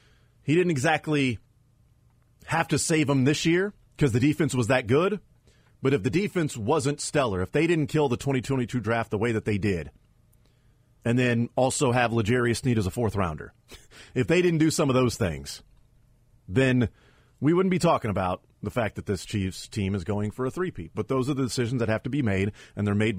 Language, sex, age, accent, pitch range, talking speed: English, male, 40-59, American, 110-135 Hz, 205 wpm